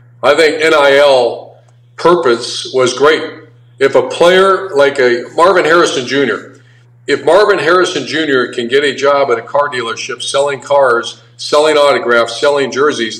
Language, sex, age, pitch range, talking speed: English, male, 50-69, 120-150 Hz, 145 wpm